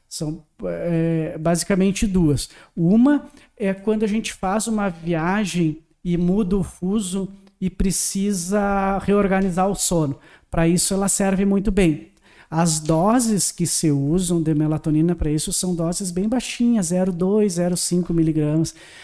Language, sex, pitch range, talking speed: Portuguese, male, 160-195 Hz, 135 wpm